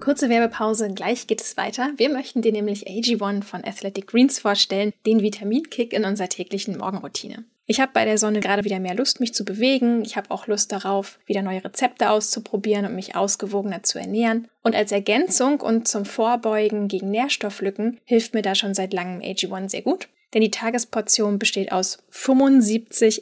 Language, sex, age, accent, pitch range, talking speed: German, female, 10-29, German, 200-235 Hz, 180 wpm